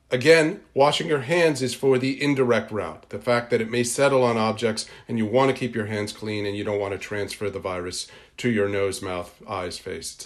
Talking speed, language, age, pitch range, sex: 235 wpm, English, 40-59, 105-130 Hz, male